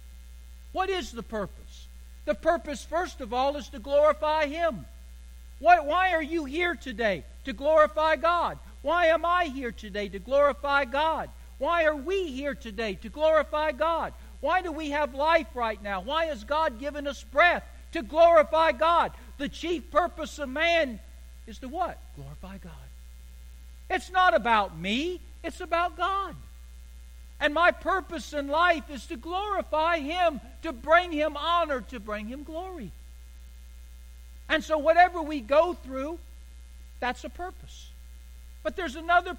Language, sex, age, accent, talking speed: English, male, 60-79, American, 150 wpm